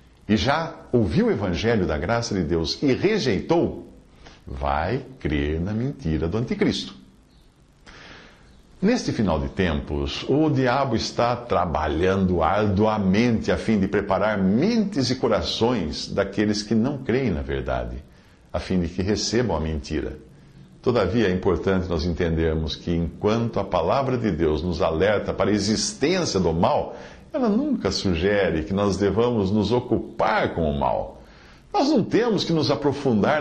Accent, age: Brazilian, 60-79